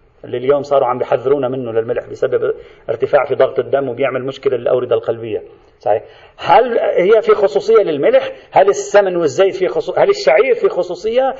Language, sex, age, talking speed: Arabic, male, 40-59, 160 wpm